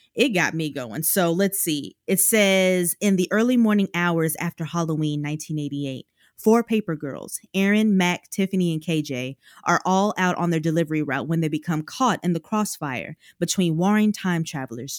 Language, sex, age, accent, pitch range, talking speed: English, female, 20-39, American, 155-200 Hz, 170 wpm